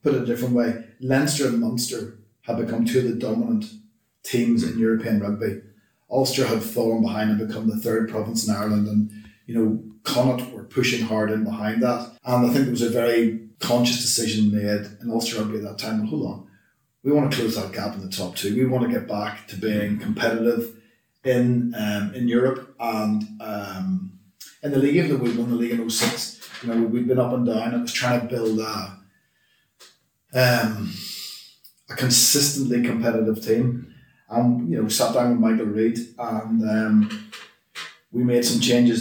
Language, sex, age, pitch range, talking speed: English, male, 30-49, 110-125 Hz, 195 wpm